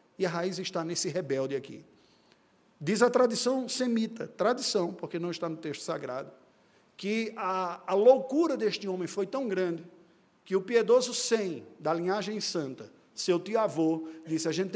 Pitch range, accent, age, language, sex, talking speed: 160-200 Hz, Brazilian, 50-69, Portuguese, male, 160 wpm